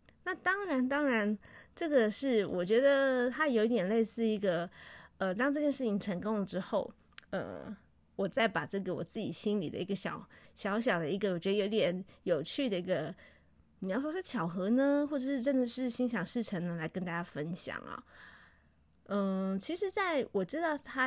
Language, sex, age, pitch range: Chinese, female, 20-39, 180-235 Hz